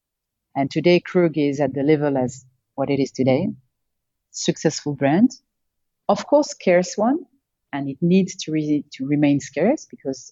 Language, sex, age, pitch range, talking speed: English, female, 40-59, 140-185 Hz, 150 wpm